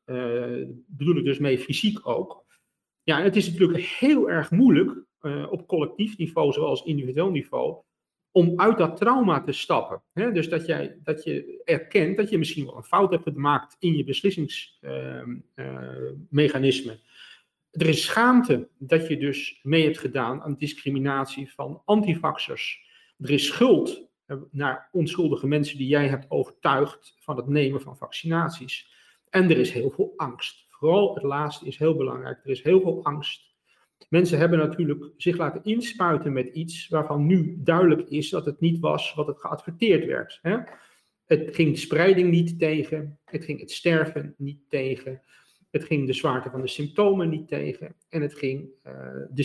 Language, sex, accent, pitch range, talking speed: Dutch, male, Dutch, 140-175 Hz, 170 wpm